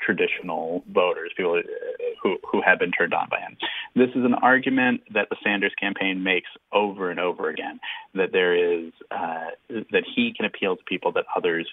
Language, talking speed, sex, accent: English, 185 wpm, male, American